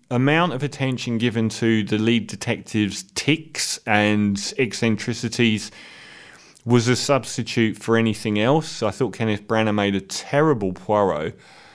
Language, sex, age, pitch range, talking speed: English, male, 30-49, 105-135 Hz, 130 wpm